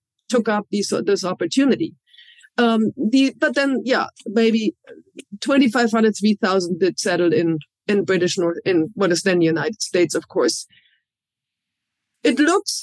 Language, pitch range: English, 205-255 Hz